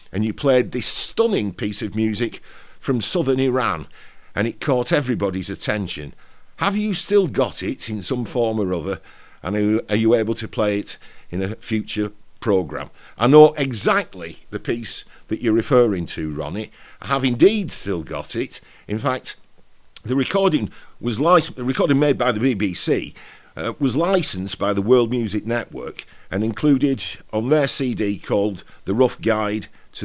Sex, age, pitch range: male, 50-69, 100-130 Hz